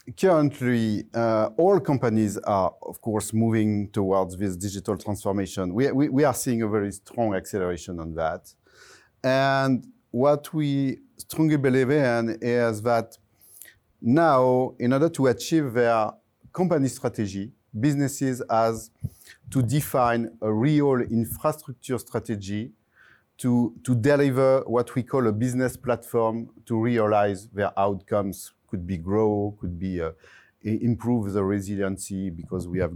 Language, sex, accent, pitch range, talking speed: English, male, French, 100-130 Hz, 130 wpm